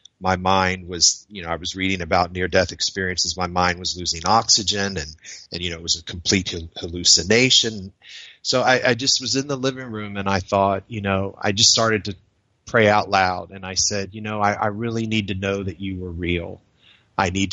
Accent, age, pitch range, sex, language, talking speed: American, 30-49, 95-110 Hz, male, English, 215 wpm